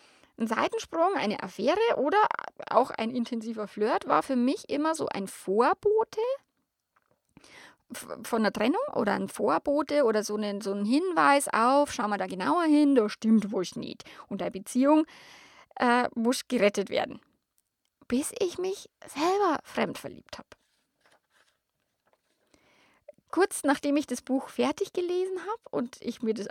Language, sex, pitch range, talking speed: German, female, 245-350 Hz, 145 wpm